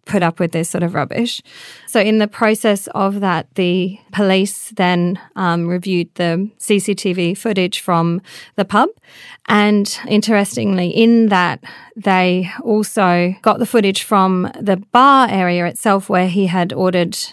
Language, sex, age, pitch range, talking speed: English, female, 30-49, 180-220 Hz, 145 wpm